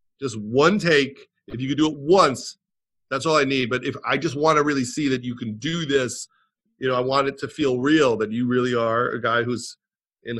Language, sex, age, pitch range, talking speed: English, male, 40-59, 125-160 Hz, 240 wpm